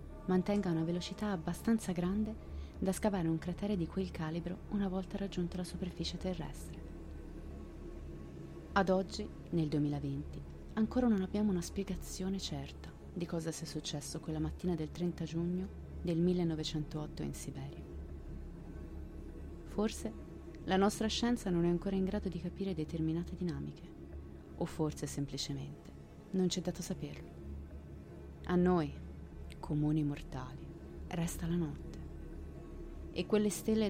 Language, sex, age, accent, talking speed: Italian, female, 30-49, native, 125 wpm